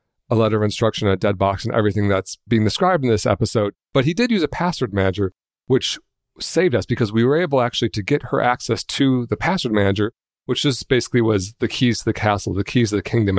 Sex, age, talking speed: male, 40-59, 230 wpm